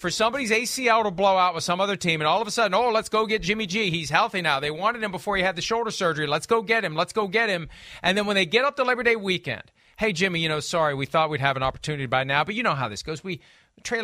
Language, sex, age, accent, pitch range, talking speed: English, male, 40-59, American, 155-220 Hz, 310 wpm